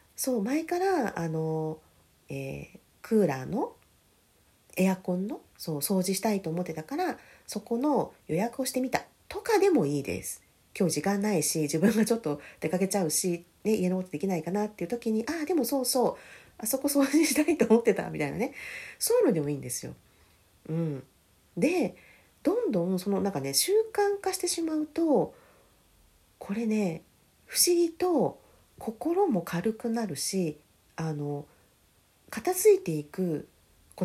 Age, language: 40-59, Japanese